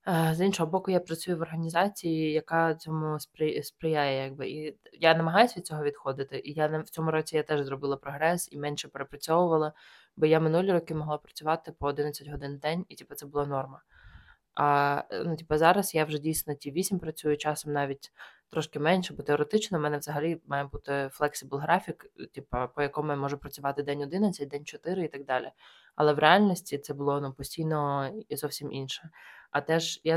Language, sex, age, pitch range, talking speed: Ukrainian, female, 20-39, 145-165 Hz, 190 wpm